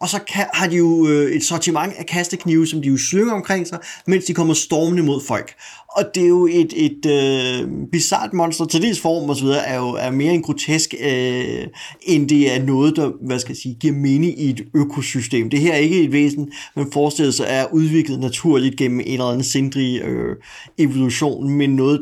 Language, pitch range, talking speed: Danish, 130-165 Hz, 200 wpm